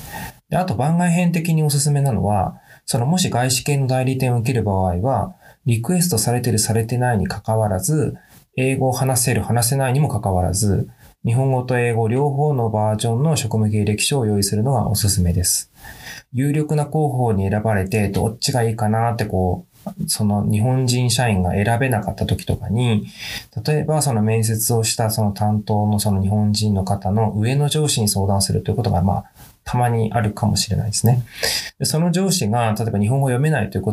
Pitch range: 105-135 Hz